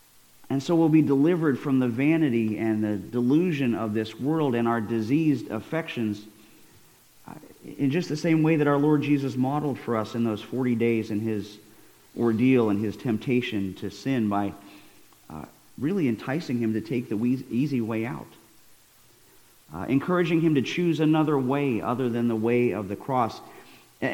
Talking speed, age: 170 wpm, 40-59